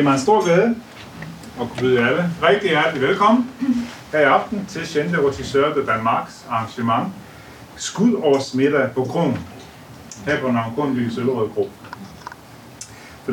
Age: 30-49